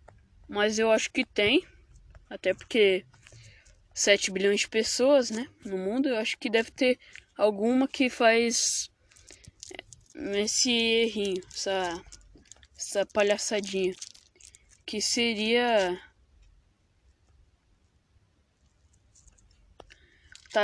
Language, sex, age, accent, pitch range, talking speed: Portuguese, female, 10-29, Brazilian, 190-255 Hz, 85 wpm